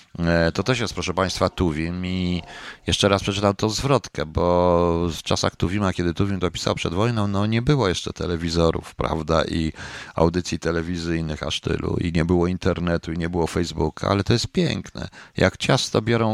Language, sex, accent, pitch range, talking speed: Polish, male, native, 80-100 Hz, 175 wpm